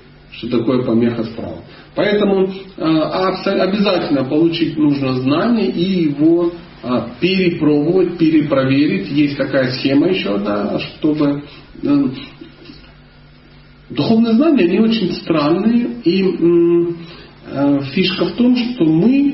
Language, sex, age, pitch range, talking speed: Russian, male, 40-59, 140-205 Hz, 110 wpm